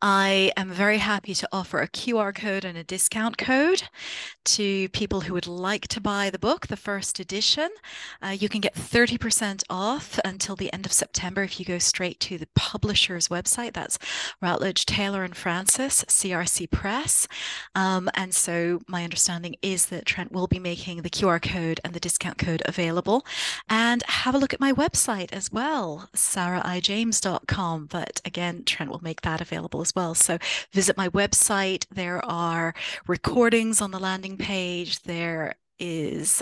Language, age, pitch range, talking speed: English, 30-49, 175-205 Hz, 165 wpm